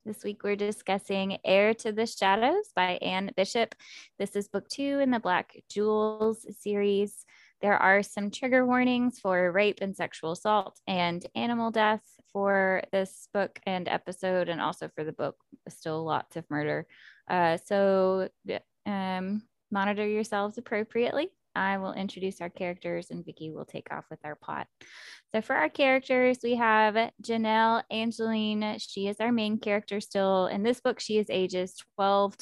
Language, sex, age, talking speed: English, female, 20-39, 160 wpm